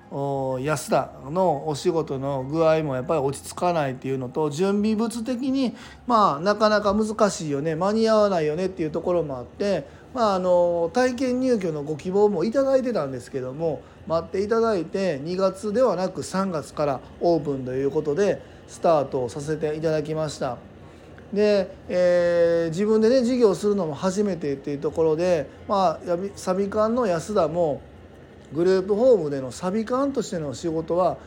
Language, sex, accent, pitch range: Japanese, male, native, 150-210 Hz